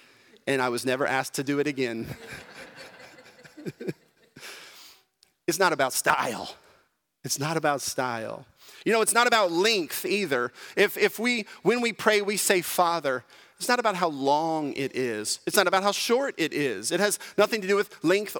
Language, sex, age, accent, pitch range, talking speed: English, male, 40-59, American, 165-220 Hz, 175 wpm